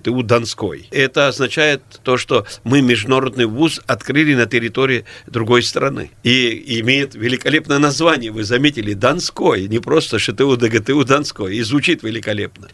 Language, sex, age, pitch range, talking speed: Russian, male, 50-69, 120-155 Hz, 135 wpm